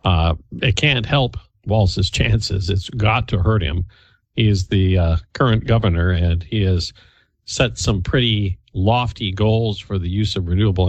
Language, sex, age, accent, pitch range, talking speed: English, male, 50-69, American, 95-125 Hz, 165 wpm